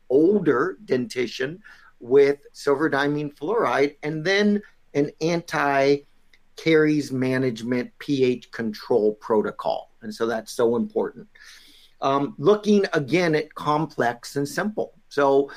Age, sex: 50-69, male